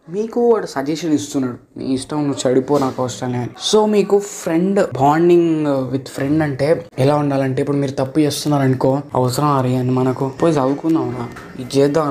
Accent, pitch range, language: native, 130-160 Hz, Telugu